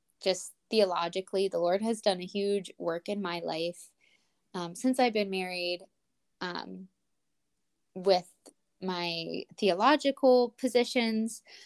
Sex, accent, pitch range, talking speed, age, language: female, American, 175-210 Hz, 115 wpm, 20-39, English